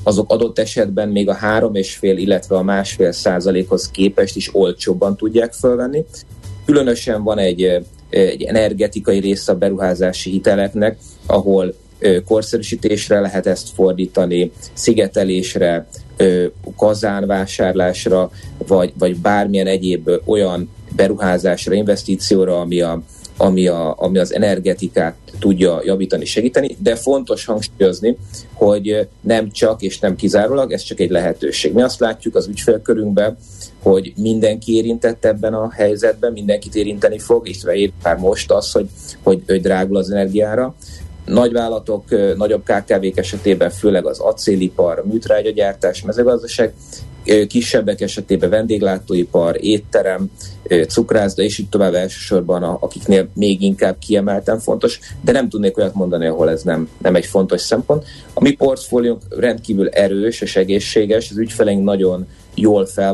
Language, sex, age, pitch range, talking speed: Hungarian, male, 30-49, 95-110 Hz, 130 wpm